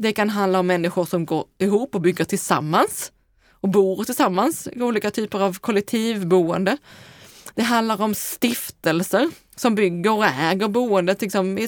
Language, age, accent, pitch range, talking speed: Swedish, 20-39, native, 190-260 Hz, 155 wpm